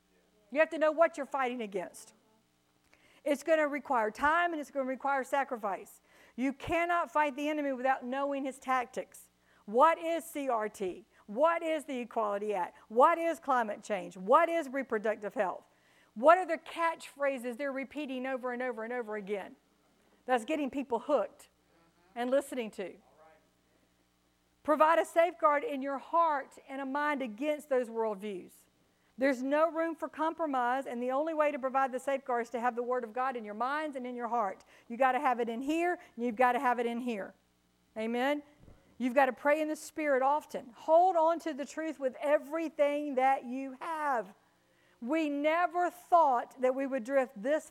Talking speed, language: 180 wpm, English